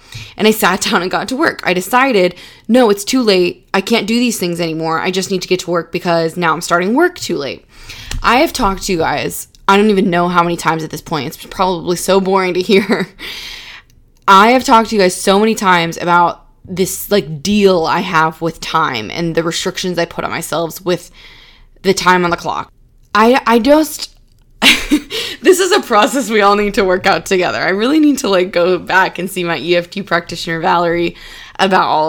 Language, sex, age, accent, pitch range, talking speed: English, female, 20-39, American, 170-215 Hz, 215 wpm